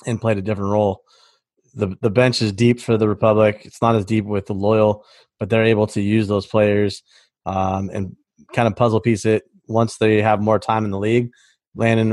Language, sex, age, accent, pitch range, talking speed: English, male, 20-39, American, 105-115 Hz, 215 wpm